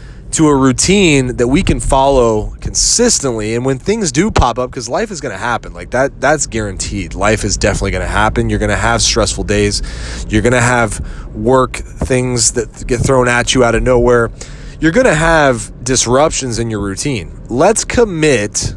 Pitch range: 105-135 Hz